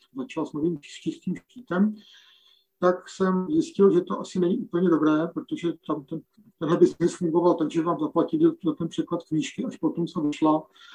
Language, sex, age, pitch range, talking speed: Czech, male, 50-69, 160-215 Hz, 170 wpm